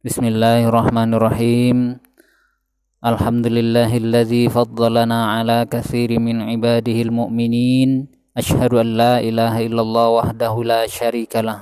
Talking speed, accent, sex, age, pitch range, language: 85 wpm, native, male, 20-39, 110-120 Hz, Indonesian